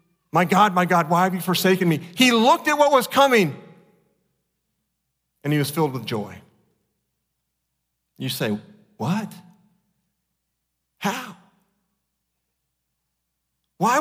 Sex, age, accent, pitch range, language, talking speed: male, 40-59, American, 150-235 Hz, English, 110 wpm